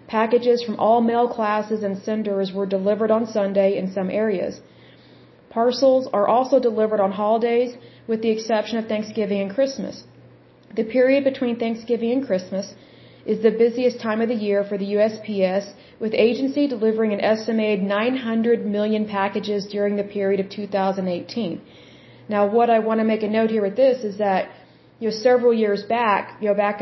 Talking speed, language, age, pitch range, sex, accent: 170 wpm, Bengali, 40-59, 205-235 Hz, female, American